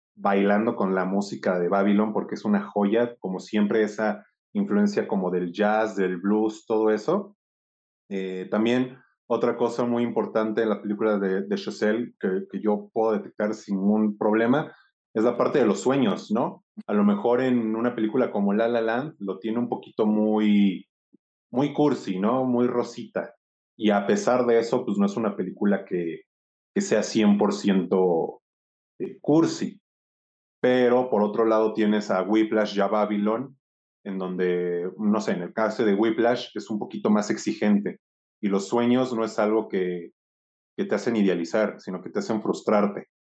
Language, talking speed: Spanish, 170 wpm